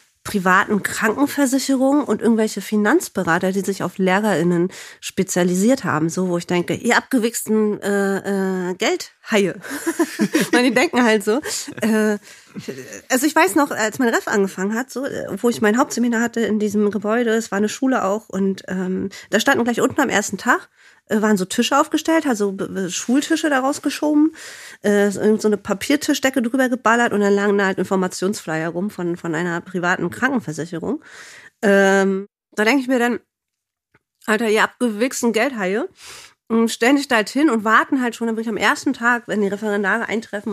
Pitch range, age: 190-235 Hz, 30-49